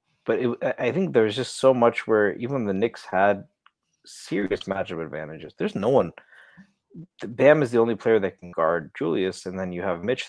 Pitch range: 95-115 Hz